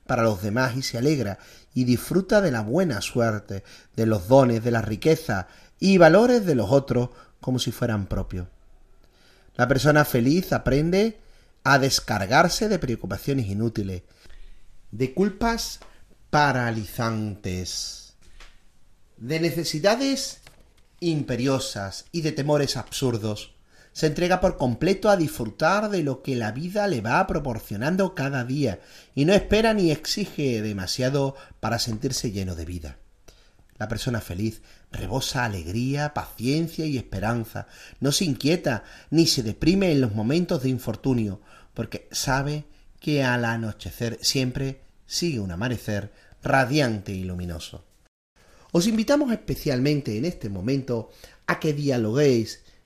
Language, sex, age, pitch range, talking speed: Spanish, male, 40-59, 110-155 Hz, 130 wpm